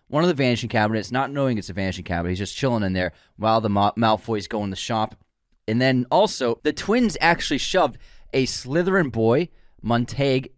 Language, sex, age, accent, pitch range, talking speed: English, male, 20-39, American, 110-145 Hz, 195 wpm